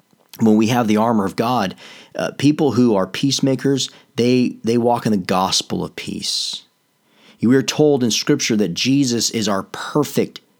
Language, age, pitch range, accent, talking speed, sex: English, 40-59, 90-115 Hz, American, 170 wpm, male